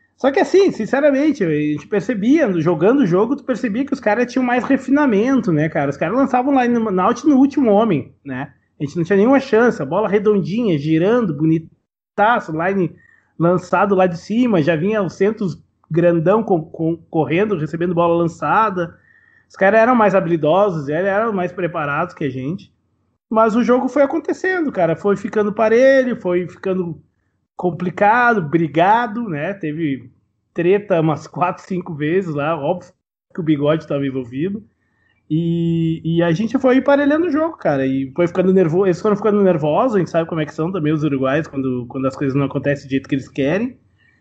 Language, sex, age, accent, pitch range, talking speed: Portuguese, male, 20-39, Brazilian, 155-220 Hz, 180 wpm